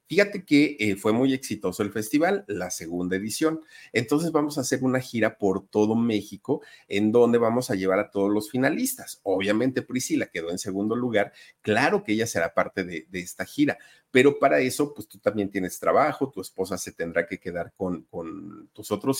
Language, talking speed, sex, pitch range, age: Spanish, 195 wpm, male, 100-150 Hz, 50-69